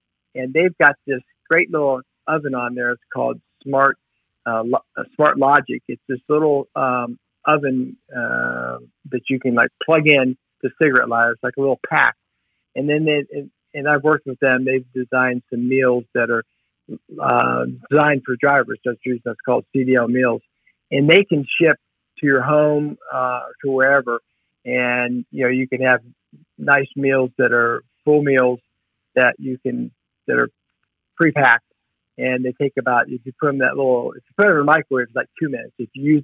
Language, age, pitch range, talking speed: English, 50-69, 120-140 Hz, 190 wpm